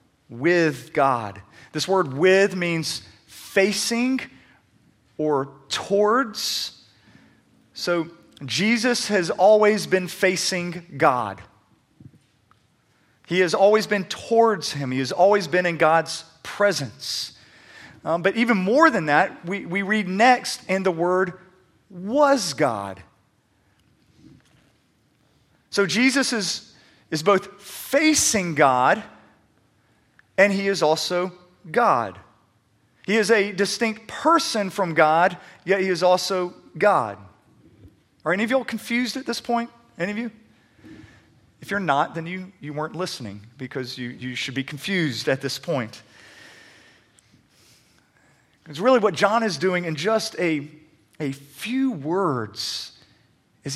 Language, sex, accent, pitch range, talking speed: English, male, American, 135-205 Hz, 125 wpm